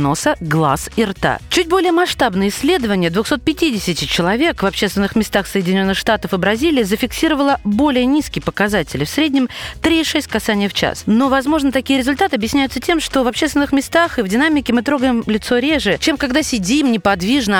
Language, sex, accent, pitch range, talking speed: Russian, female, native, 200-280 Hz, 165 wpm